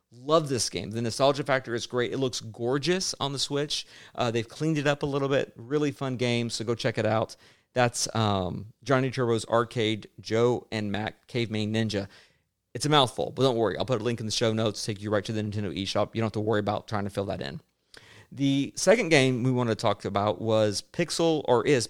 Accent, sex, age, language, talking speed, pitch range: American, male, 40-59, English, 235 wpm, 110-140 Hz